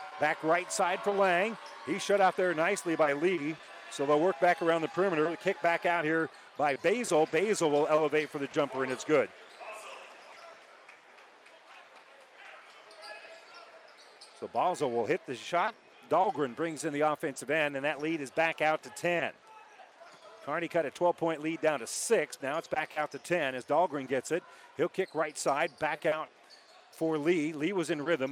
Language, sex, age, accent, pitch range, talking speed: English, male, 40-59, American, 150-180 Hz, 180 wpm